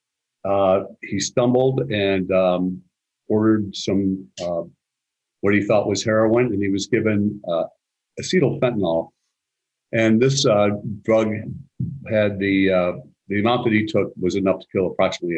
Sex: male